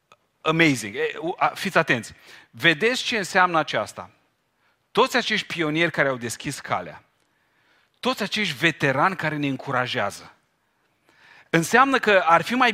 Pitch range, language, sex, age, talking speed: 125-185 Hz, Romanian, male, 40-59, 120 wpm